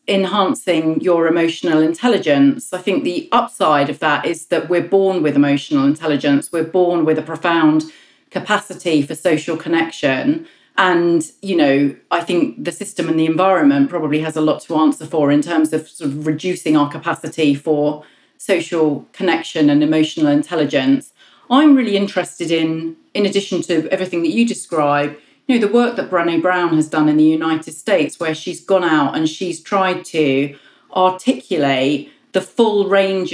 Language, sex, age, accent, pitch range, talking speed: English, female, 40-59, British, 155-195 Hz, 165 wpm